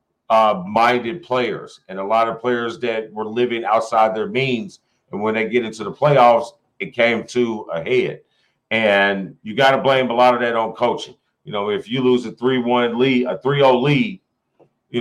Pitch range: 110-130 Hz